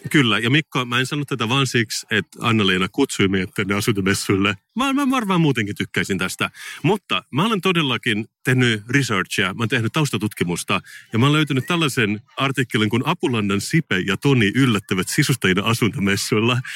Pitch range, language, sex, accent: 100-140 Hz, Finnish, male, native